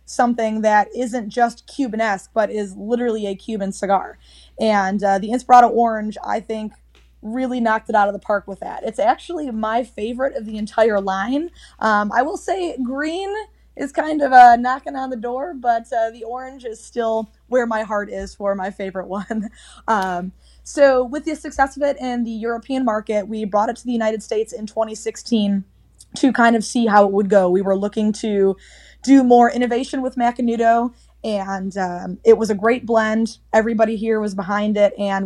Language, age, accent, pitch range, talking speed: English, 20-39, American, 200-240 Hz, 190 wpm